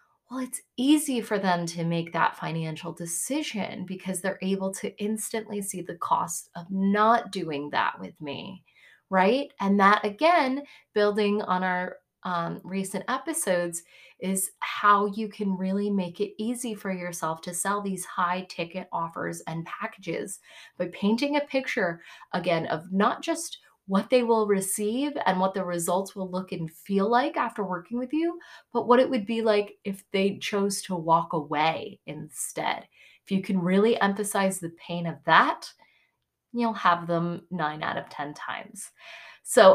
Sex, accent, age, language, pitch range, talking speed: female, American, 20-39, English, 180-245 Hz, 165 wpm